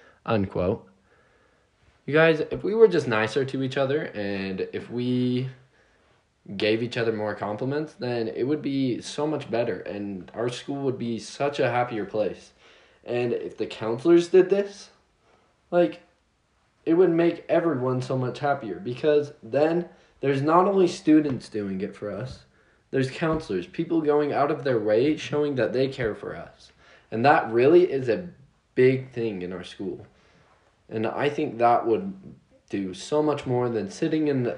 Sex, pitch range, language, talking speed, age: male, 110-150 Hz, English, 165 wpm, 20-39